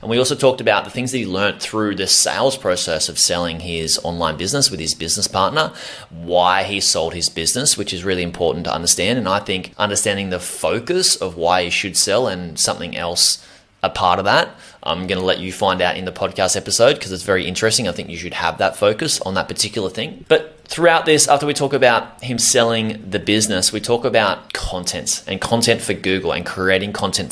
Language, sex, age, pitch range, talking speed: English, male, 20-39, 90-120 Hz, 220 wpm